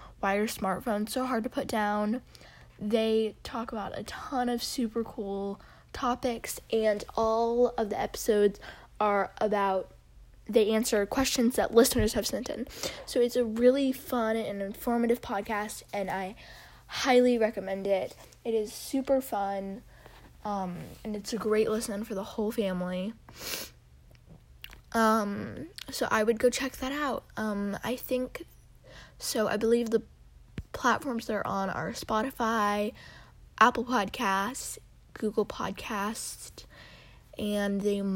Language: English